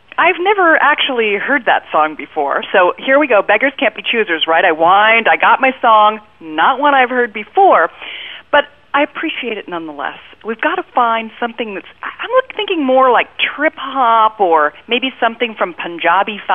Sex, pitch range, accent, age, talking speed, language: female, 195-290 Hz, American, 40-59, 175 wpm, English